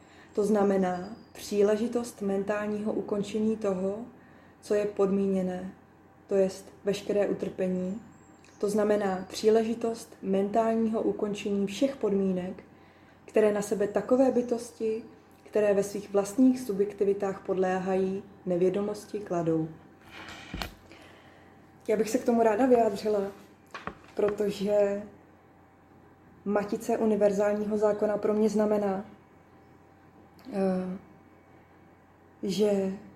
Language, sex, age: Czech, female, 20-39